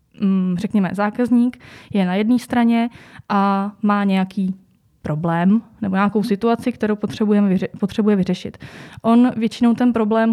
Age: 20-39